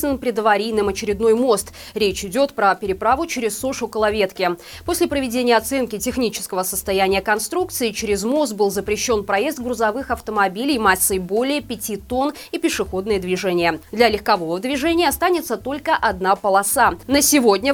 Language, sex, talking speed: Russian, female, 130 wpm